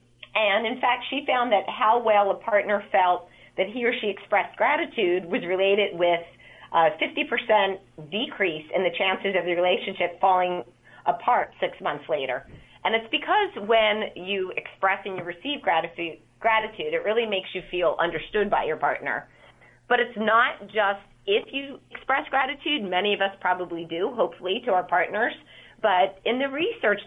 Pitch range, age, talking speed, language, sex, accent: 165-220 Hz, 30-49, 165 wpm, English, female, American